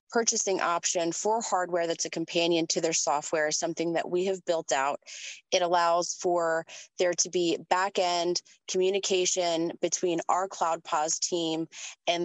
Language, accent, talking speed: English, American, 150 wpm